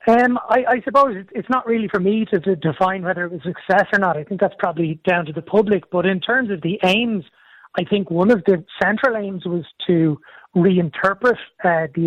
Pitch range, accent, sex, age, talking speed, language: 165-195 Hz, Irish, male, 30-49, 220 wpm, English